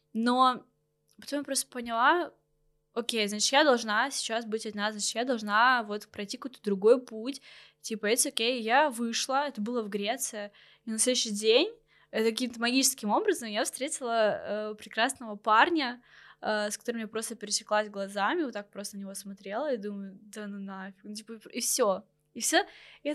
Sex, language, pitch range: female, Russian, 205-240 Hz